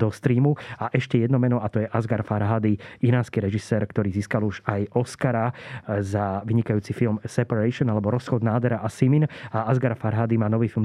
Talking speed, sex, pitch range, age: 185 wpm, male, 110-125 Hz, 30-49